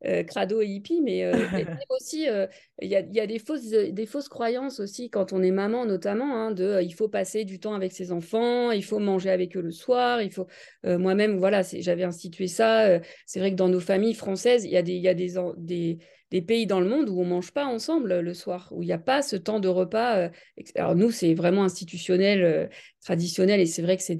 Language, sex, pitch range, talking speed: French, female, 180-225 Hz, 250 wpm